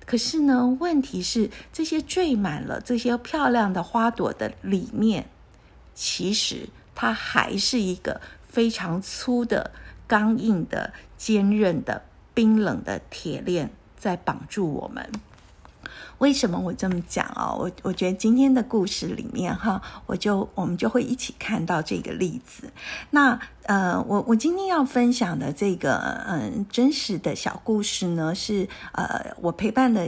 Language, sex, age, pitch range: Chinese, female, 50-69, 180-245 Hz